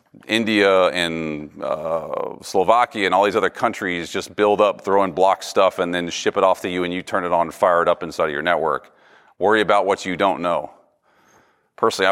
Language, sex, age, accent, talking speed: English, male, 40-59, American, 215 wpm